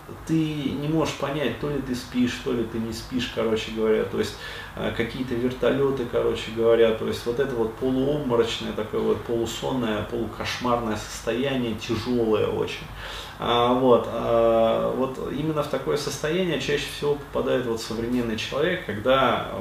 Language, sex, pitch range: Russian, male, 110-135 Hz